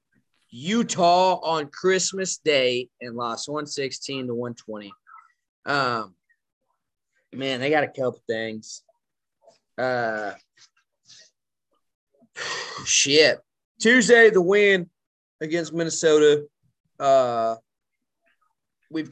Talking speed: 80 wpm